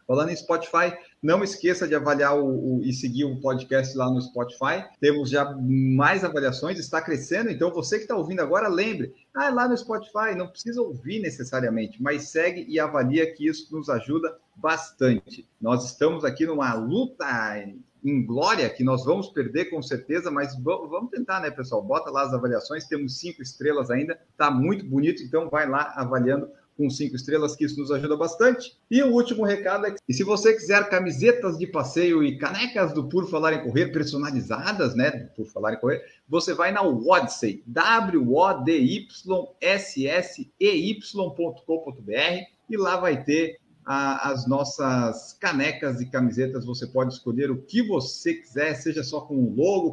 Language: Portuguese